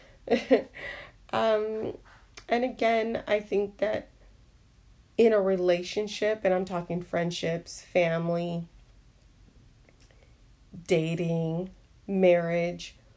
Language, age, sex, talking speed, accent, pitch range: English, 30-49, female, 75 wpm, American, 170-195 Hz